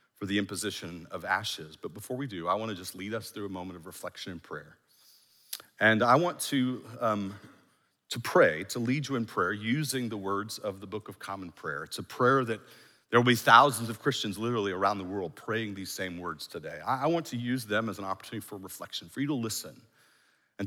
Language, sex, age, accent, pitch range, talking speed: English, male, 40-59, American, 95-125 Hz, 225 wpm